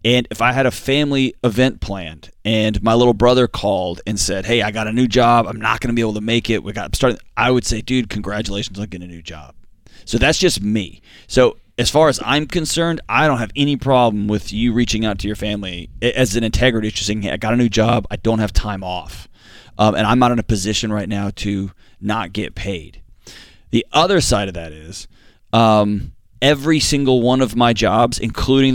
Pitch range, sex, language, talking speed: 100-120 Hz, male, English, 225 wpm